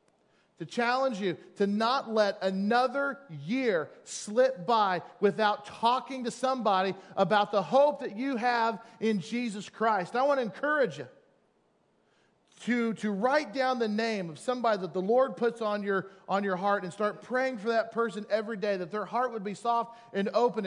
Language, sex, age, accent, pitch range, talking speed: English, male, 40-59, American, 195-250 Hz, 175 wpm